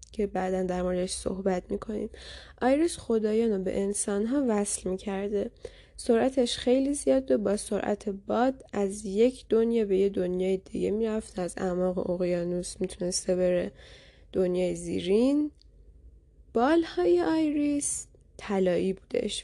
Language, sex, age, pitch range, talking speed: Persian, female, 10-29, 185-240 Hz, 115 wpm